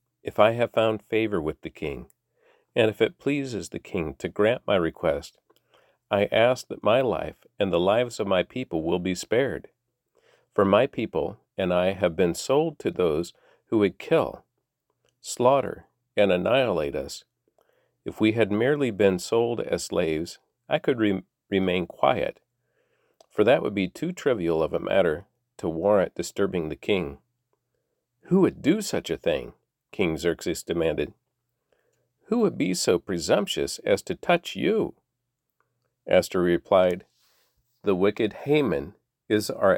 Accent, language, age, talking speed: American, English, 50-69, 150 wpm